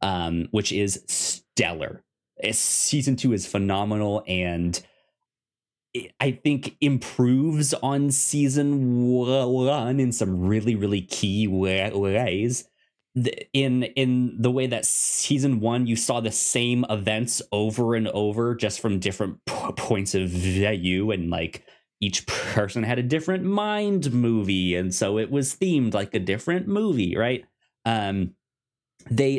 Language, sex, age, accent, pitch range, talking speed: English, male, 30-49, American, 100-130 Hz, 135 wpm